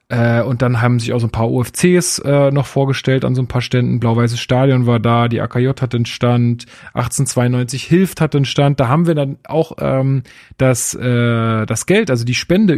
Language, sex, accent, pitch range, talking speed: German, male, German, 125-150 Hz, 205 wpm